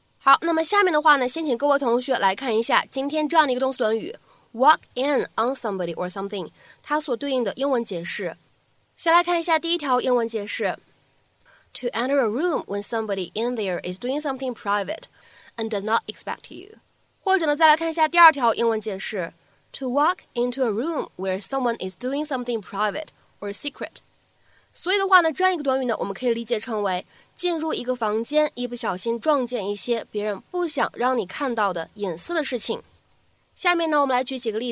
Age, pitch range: 20-39, 215-300 Hz